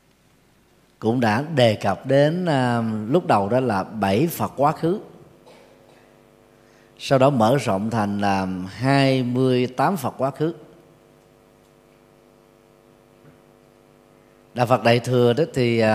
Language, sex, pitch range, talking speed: Vietnamese, male, 100-130 Hz, 120 wpm